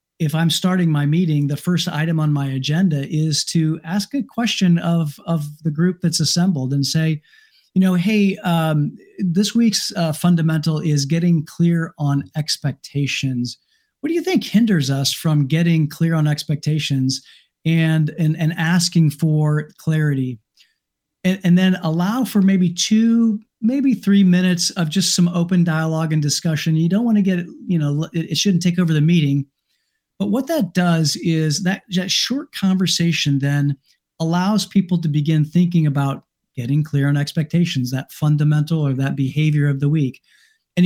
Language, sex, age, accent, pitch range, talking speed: English, male, 40-59, American, 150-185 Hz, 165 wpm